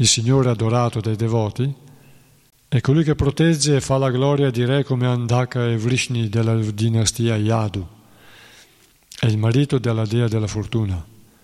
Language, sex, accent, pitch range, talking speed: Italian, male, native, 115-135 Hz, 150 wpm